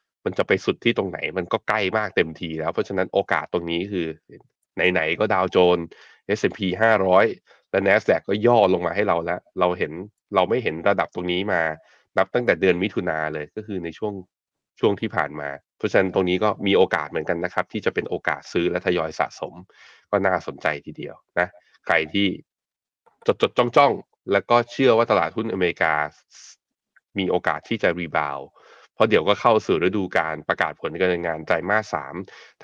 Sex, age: male, 20-39